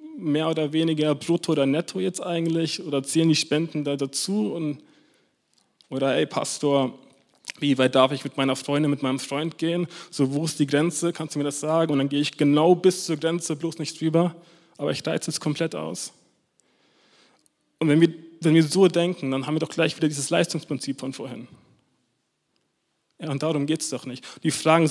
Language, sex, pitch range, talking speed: German, male, 130-160 Hz, 195 wpm